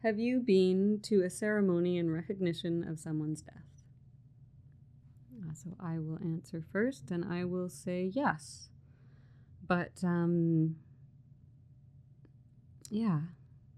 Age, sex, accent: 30-49, female, American